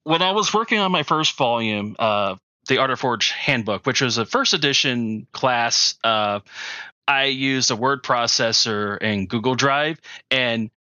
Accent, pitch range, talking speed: American, 120-145 Hz, 165 wpm